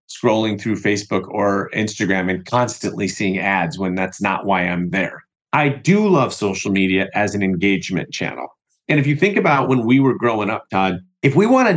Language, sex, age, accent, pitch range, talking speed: English, male, 40-59, American, 105-150 Hz, 195 wpm